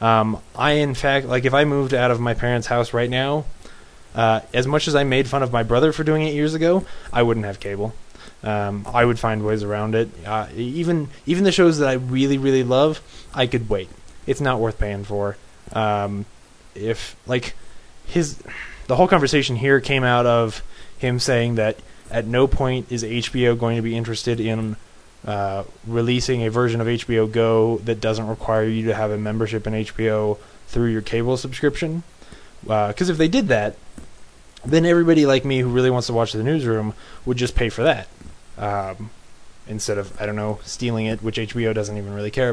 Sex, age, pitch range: male, 20-39, 110-130 Hz